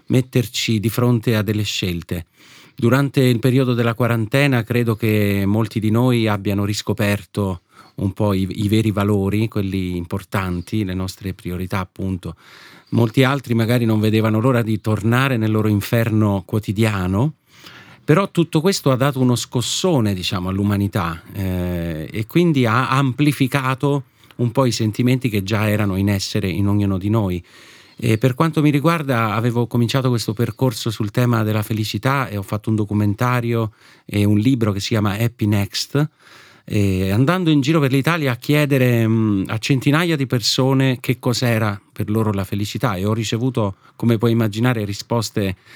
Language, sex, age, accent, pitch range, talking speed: Italian, male, 40-59, native, 100-130 Hz, 155 wpm